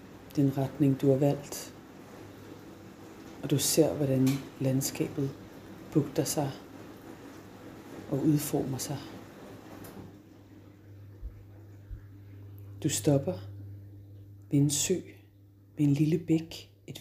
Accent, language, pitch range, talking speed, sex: native, Danish, 100-140 Hz, 90 wpm, female